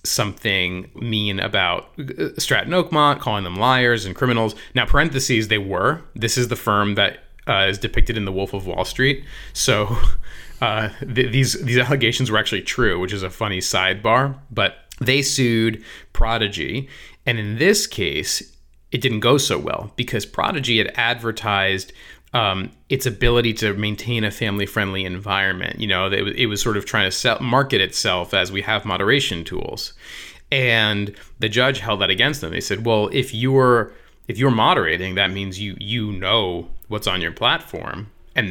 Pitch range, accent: 100-125 Hz, American